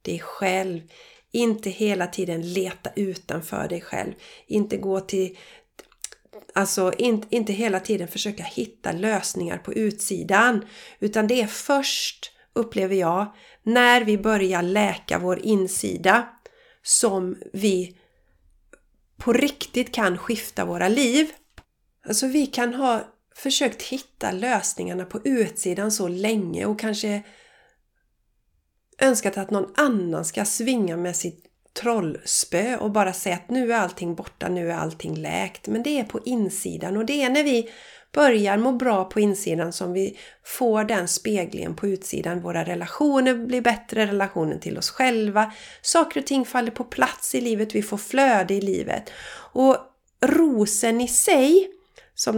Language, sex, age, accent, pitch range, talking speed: Swedish, female, 30-49, native, 190-250 Hz, 140 wpm